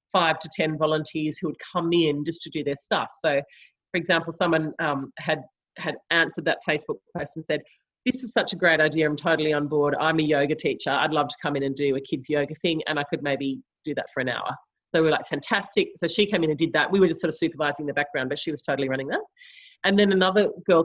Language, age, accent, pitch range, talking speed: English, 30-49, Australian, 150-180 Hz, 260 wpm